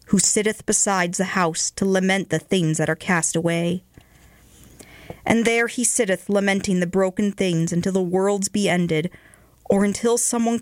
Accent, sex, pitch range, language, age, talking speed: American, female, 160-205 Hz, English, 40-59, 165 wpm